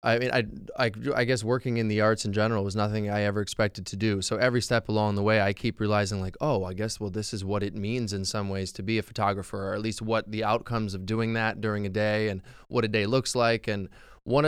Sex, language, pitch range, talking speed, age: male, English, 105-125 Hz, 270 wpm, 20-39